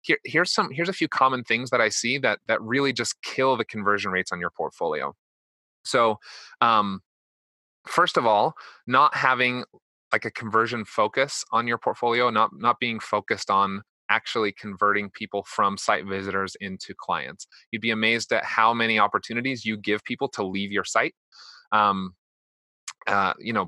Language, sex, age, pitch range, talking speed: English, male, 30-49, 105-130 Hz, 170 wpm